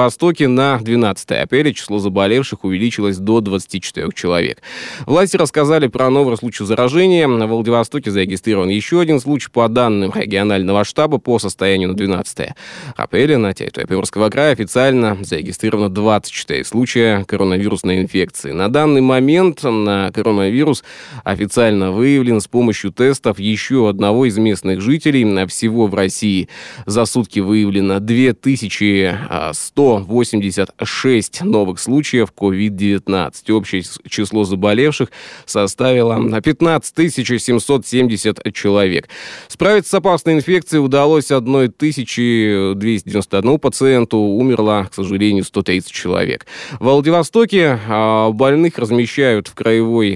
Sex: male